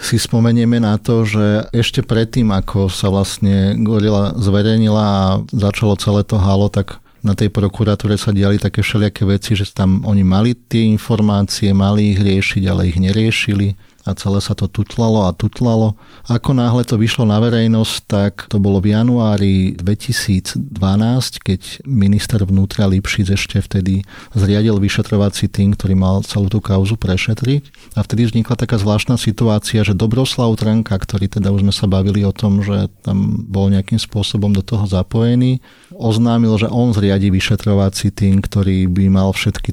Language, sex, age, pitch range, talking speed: Slovak, male, 40-59, 100-110 Hz, 160 wpm